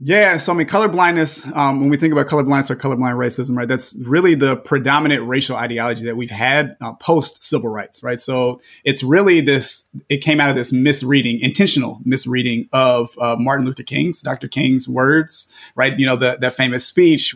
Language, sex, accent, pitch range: English, male, American, 125-150 Hz